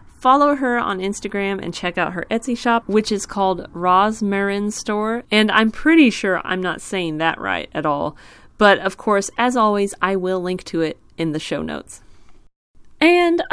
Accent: American